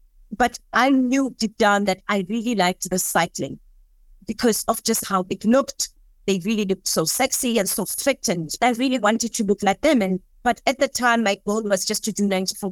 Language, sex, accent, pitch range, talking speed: English, female, South African, 205-245 Hz, 210 wpm